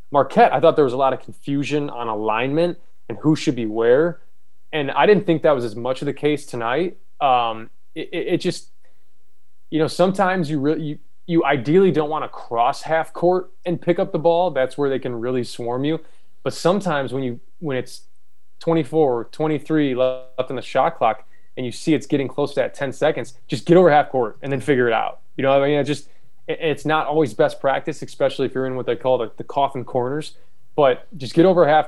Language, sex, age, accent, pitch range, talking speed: English, male, 20-39, American, 130-160 Hz, 230 wpm